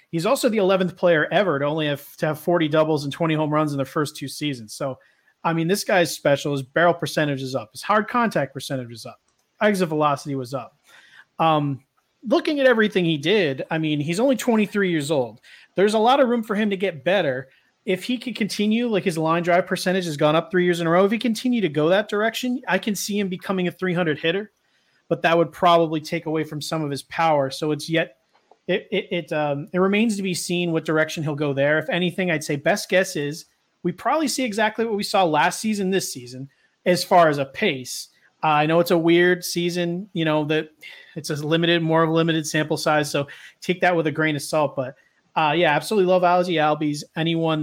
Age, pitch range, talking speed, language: 30-49, 150-190 Hz, 230 wpm, English